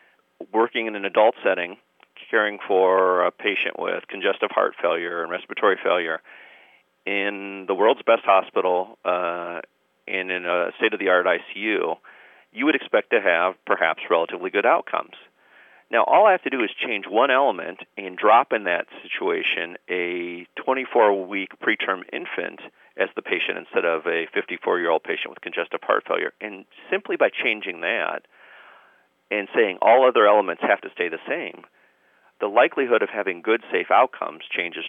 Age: 40-59